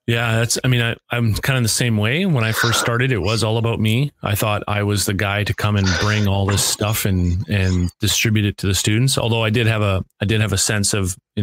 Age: 30-49